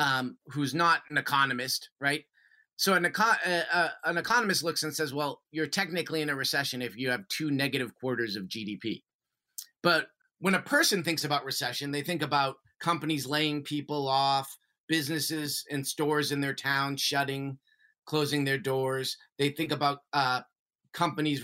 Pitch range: 135-165 Hz